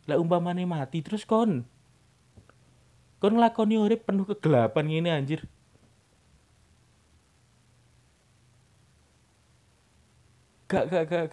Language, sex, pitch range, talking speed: Indonesian, male, 115-175 Hz, 80 wpm